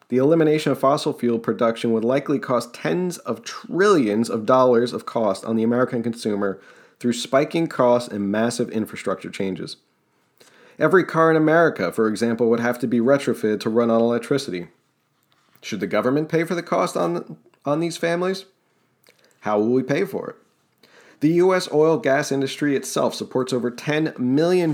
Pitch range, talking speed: 115-150 Hz, 165 wpm